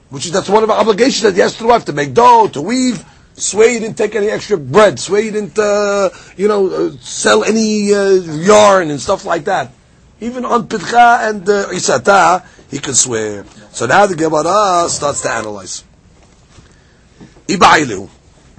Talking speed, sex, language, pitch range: 180 wpm, male, English, 135-205 Hz